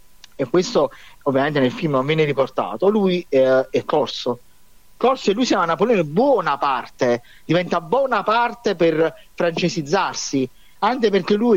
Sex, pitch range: male, 140-200 Hz